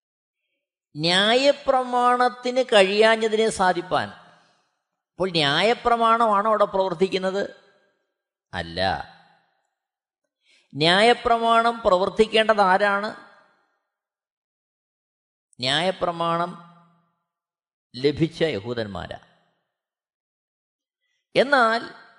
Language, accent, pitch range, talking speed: Malayalam, native, 175-245 Hz, 40 wpm